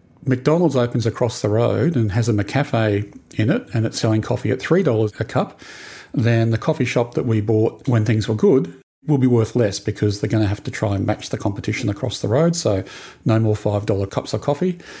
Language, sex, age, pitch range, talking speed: English, male, 40-59, 105-125 Hz, 230 wpm